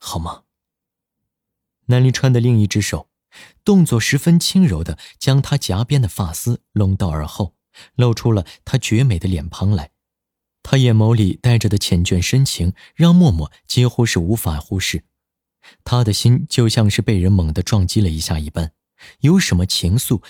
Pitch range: 90-125 Hz